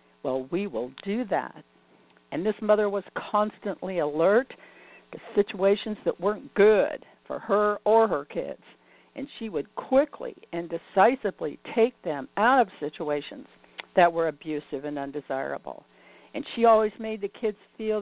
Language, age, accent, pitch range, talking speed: English, 50-69, American, 155-215 Hz, 145 wpm